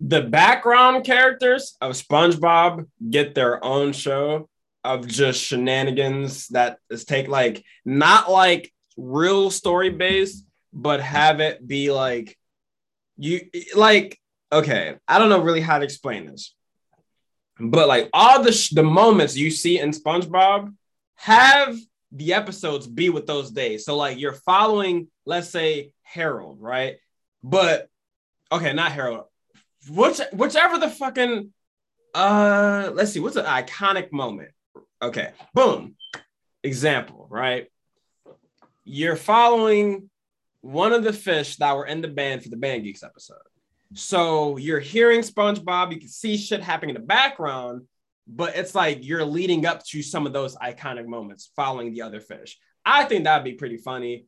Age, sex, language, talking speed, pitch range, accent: 20-39, male, English, 145 wpm, 135-200 Hz, American